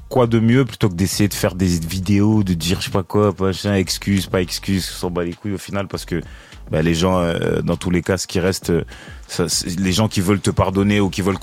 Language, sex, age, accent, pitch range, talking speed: French, male, 30-49, French, 85-105 Hz, 275 wpm